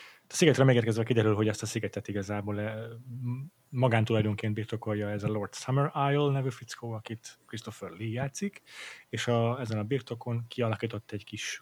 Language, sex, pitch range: Hungarian, male, 105-120 Hz